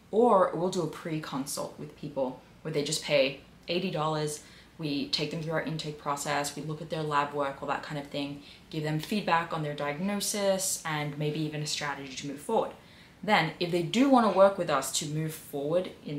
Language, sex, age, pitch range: English, female, 20-39, 150-195 Hz